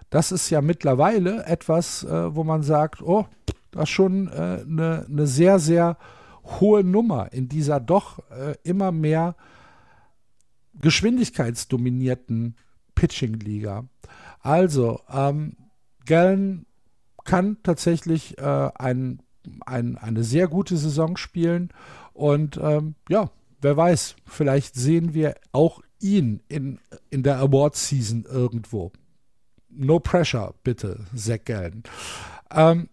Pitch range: 130-170 Hz